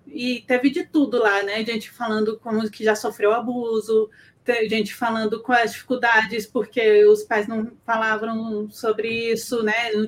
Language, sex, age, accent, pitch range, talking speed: Portuguese, female, 20-39, Brazilian, 220-270 Hz, 165 wpm